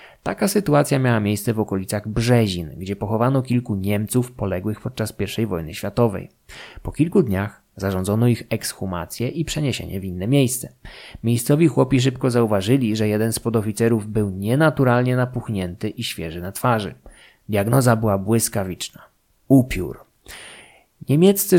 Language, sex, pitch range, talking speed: Polish, male, 100-125 Hz, 130 wpm